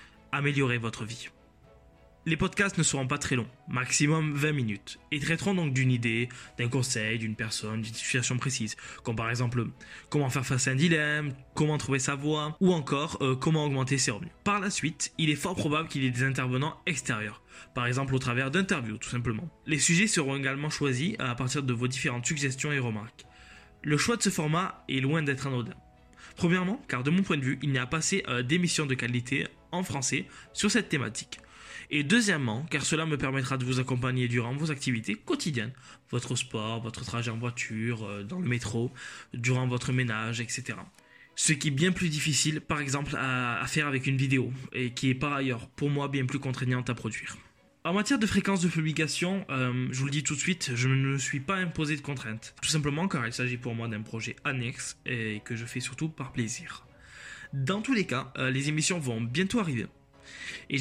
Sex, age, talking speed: male, 20-39, 210 wpm